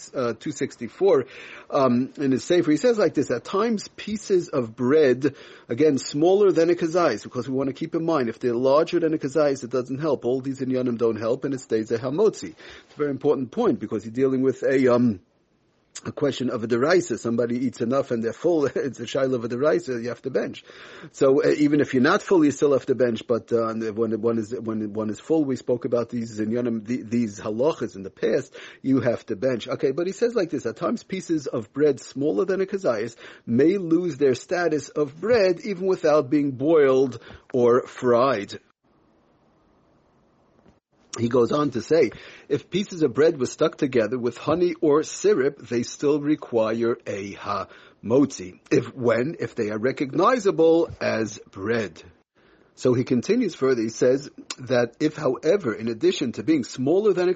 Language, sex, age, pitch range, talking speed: English, male, 40-59, 120-165 Hz, 195 wpm